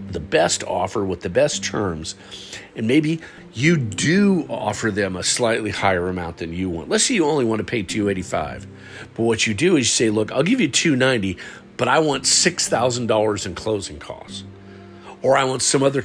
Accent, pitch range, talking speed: American, 95-120 Hz, 195 wpm